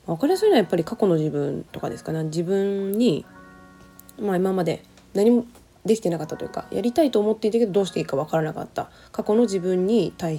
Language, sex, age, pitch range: Japanese, female, 20-39, 155-220 Hz